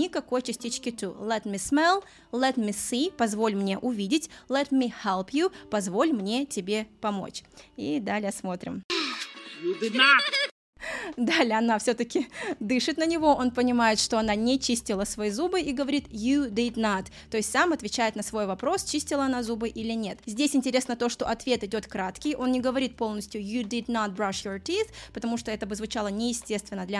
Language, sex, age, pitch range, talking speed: Russian, female, 20-39, 215-285 Hz, 175 wpm